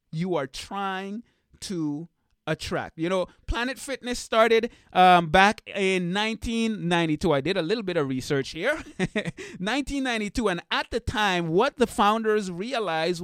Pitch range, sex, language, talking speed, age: 170-230 Hz, male, English, 140 wpm, 30-49